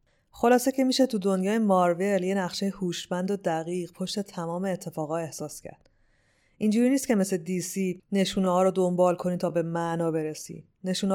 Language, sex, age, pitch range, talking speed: Persian, female, 20-39, 160-200 Hz, 160 wpm